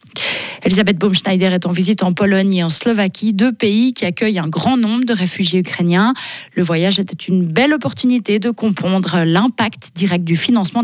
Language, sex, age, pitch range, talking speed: French, female, 30-49, 165-215 Hz, 175 wpm